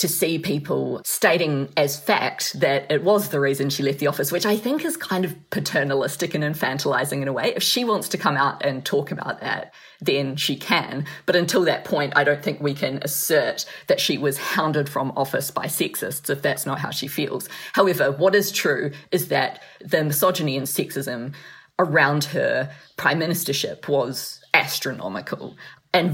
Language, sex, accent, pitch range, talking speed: English, female, Australian, 140-175 Hz, 185 wpm